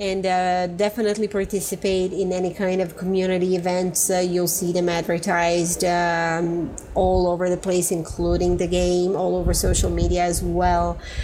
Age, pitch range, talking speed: 30-49, 180-220 Hz, 155 wpm